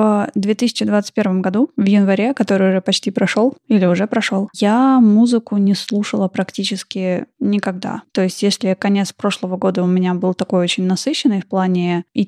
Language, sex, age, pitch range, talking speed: Russian, female, 20-39, 185-220 Hz, 160 wpm